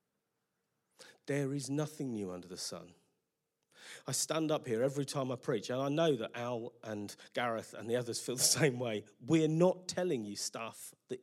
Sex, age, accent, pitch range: male, 40-59, British, 135-180 Hz